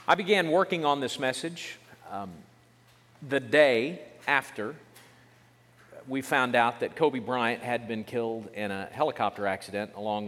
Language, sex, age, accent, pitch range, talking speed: English, male, 40-59, American, 110-135 Hz, 140 wpm